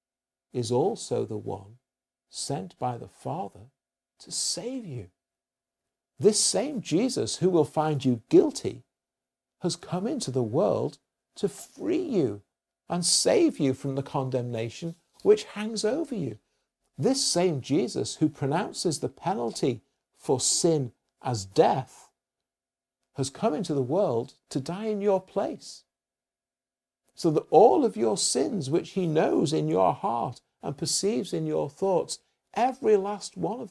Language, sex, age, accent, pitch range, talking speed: English, male, 50-69, British, 120-195 Hz, 140 wpm